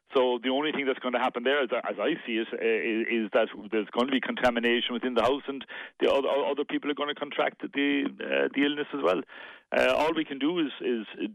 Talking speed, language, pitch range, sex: 225 wpm, English, 120-145 Hz, male